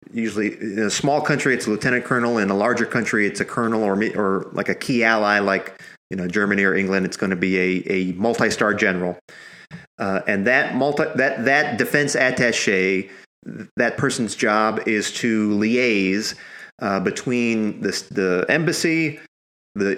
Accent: American